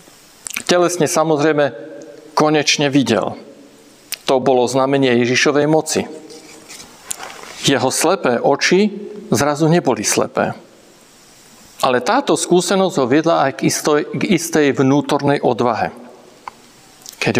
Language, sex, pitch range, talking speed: Slovak, male, 130-180 Hz, 90 wpm